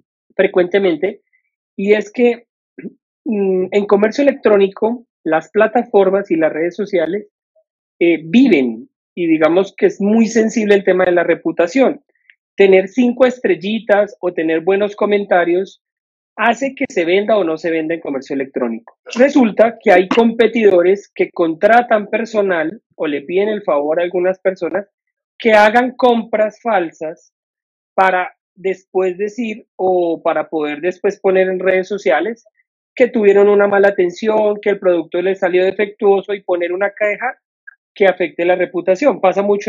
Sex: male